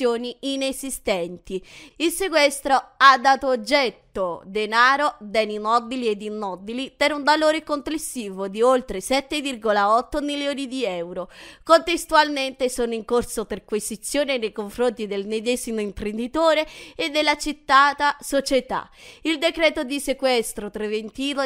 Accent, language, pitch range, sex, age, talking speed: native, Italian, 215-290 Hz, female, 20-39, 110 wpm